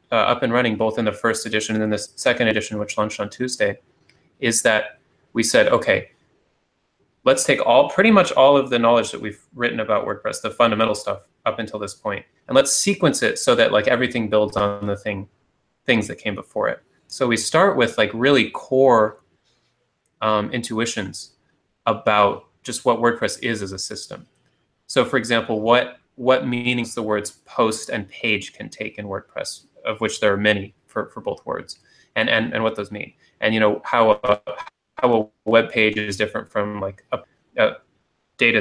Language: English